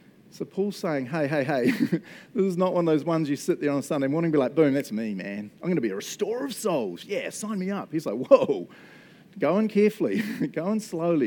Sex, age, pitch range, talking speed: male, 40-59, 140-200 Hz, 255 wpm